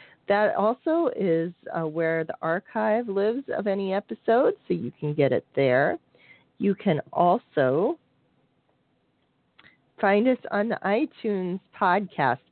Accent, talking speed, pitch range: American, 125 wpm, 155-205 Hz